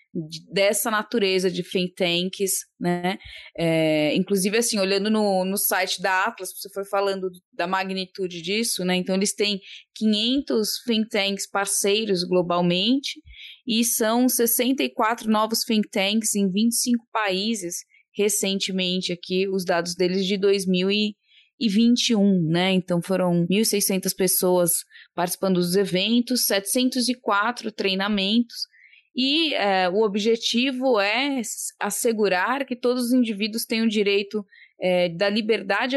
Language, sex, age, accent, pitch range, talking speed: Portuguese, female, 20-39, Brazilian, 185-225 Hz, 115 wpm